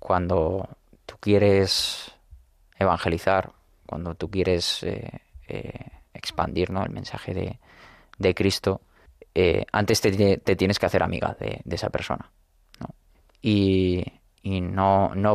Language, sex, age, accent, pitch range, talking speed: Spanish, male, 20-39, Spanish, 90-105 Hz, 135 wpm